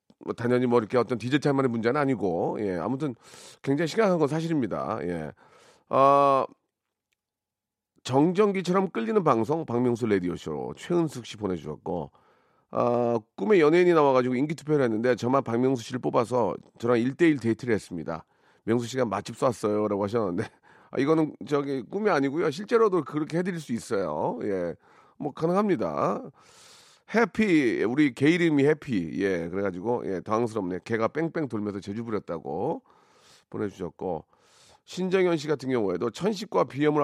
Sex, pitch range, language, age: male, 110-155 Hz, Korean, 40-59